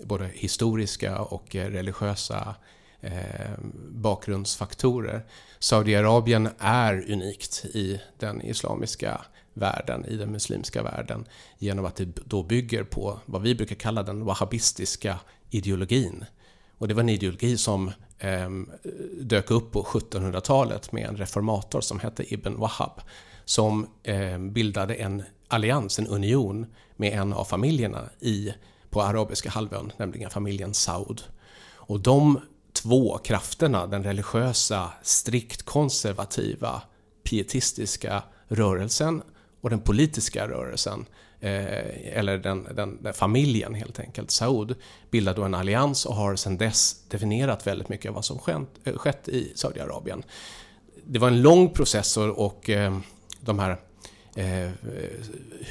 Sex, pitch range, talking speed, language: male, 100-115 Hz, 125 wpm, English